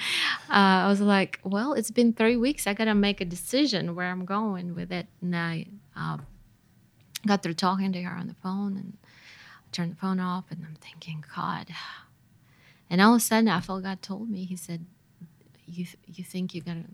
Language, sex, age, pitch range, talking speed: English, female, 20-39, 165-190 Hz, 200 wpm